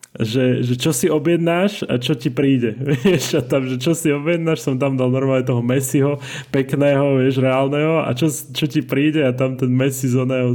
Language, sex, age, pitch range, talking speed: Slovak, male, 20-39, 120-140 Hz, 205 wpm